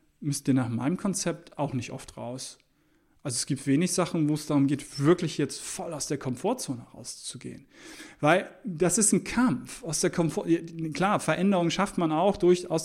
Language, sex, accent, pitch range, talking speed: German, male, German, 160-220 Hz, 190 wpm